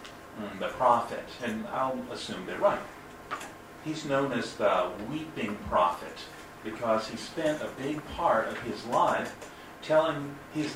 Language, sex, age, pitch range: Japanese, male, 50-69, 110-145 Hz